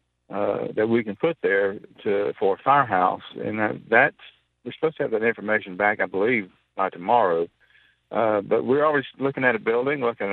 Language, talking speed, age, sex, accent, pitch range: English, 190 wpm, 50-69, male, American, 100-120 Hz